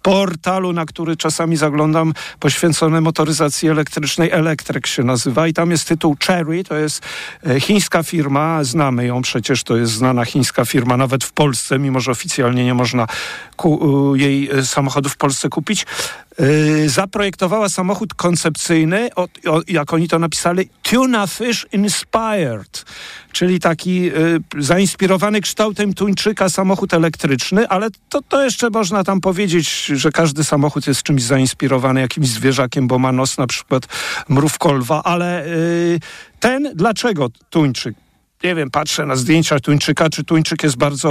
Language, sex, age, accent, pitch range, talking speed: Polish, male, 50-69, native, 145-185 Hz, 140 wpm